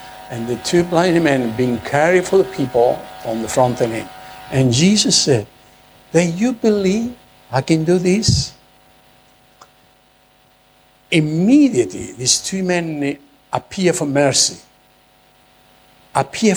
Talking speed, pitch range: 120 wpm, 95-160 Hz